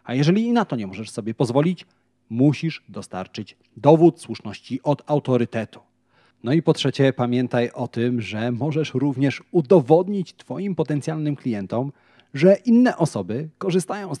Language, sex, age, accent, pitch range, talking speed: Polish, male, 30-49, native, 115-150 Hz, 145 wpm